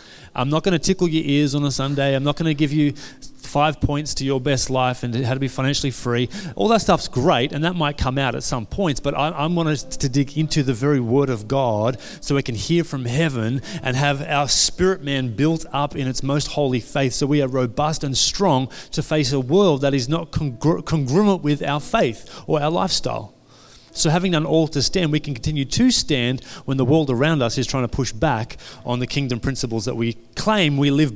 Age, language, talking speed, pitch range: 30-49, English, 230 wpm, 130-160 Hz